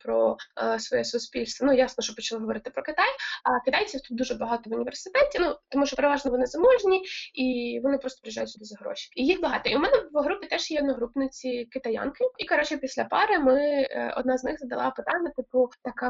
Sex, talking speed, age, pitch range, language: female, 205 wpm, 20-39, 235-280 Hz, Ukrainian